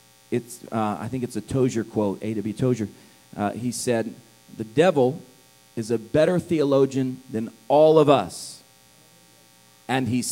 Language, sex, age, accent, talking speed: English, male, 40-59, American, 150 wpm